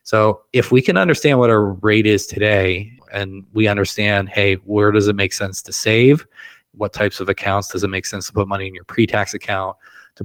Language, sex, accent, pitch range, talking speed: English, male, American, 100-125 Hz, 215 wpm